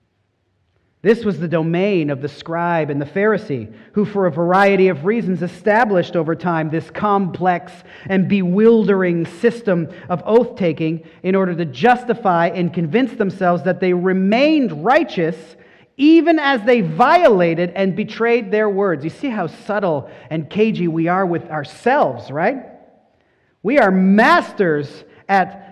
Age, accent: 40-59, American